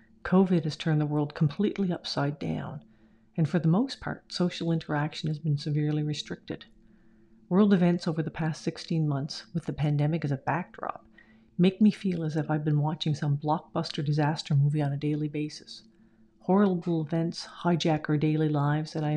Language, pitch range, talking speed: English, 150-175 Hz, 175 wpm